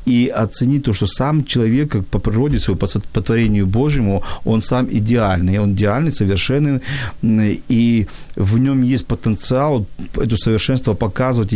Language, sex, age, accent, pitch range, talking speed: Ukrainian, male, 40-59, native, 110-130 Hz, 135 wpm